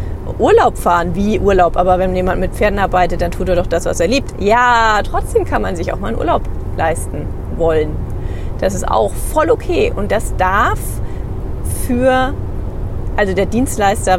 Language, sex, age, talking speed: German, female, 30-49, 175 wpm